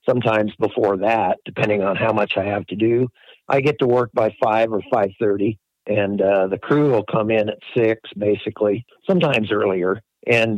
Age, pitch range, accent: 60-79, 105-130 Hz, American